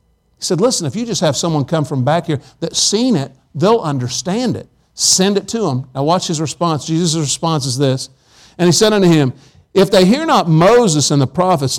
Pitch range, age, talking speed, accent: 150-195 Hz, 50-69, 220 wpm, American